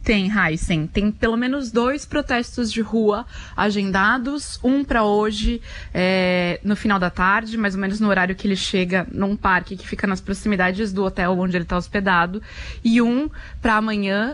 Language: Portuguese